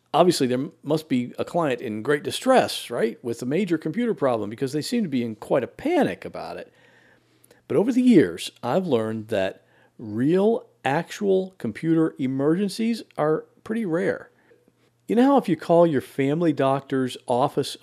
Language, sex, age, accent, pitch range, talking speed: English, male, 50-69, American, 130-200 Hz, 170 wpm